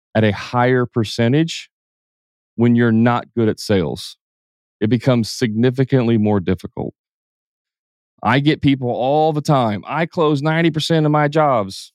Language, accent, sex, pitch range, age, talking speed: English, American, male, 110-140 Hz, 30-49, 135 wpm